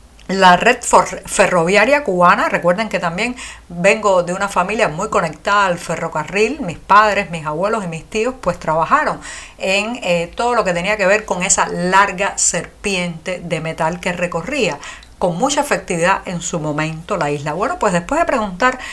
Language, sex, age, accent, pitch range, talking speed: Spanish, female, 50-69, American, 175-220 Hz, 170 wpm